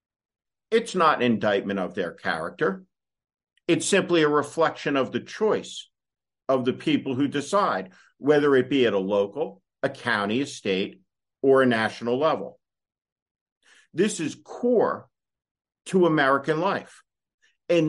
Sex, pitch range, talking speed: male, 125-150 Hz, 135 wpm